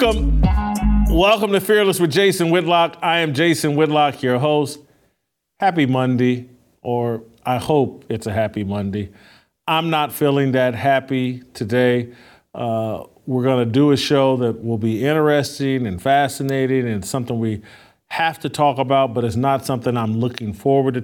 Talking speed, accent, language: 160 wpm, American, English